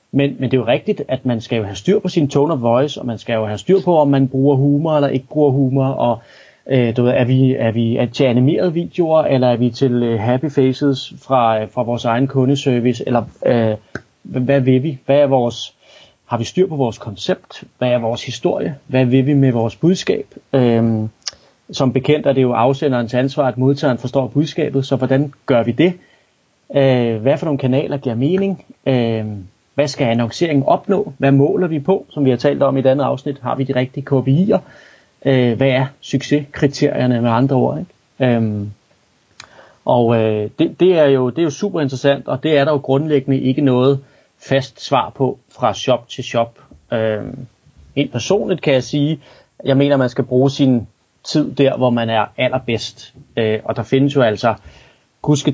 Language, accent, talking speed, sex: Danish, native, 200 wpm, male